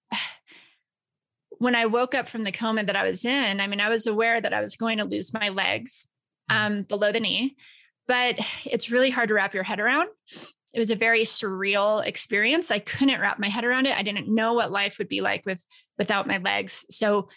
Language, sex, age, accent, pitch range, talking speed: English, female, 20-39, American, 195-235 Hz, 220 wpm